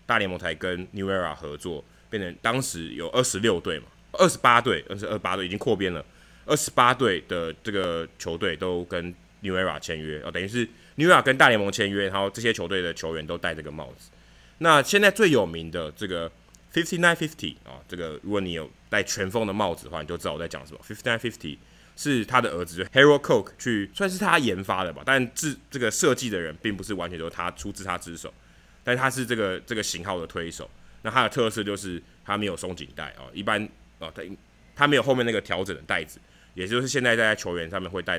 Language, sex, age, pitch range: Chinese, male, 20-39, 85-115 Hz